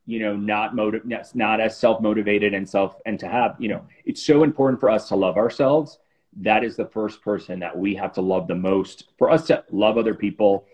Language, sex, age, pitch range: English, male, 30-49, 100-120 Hz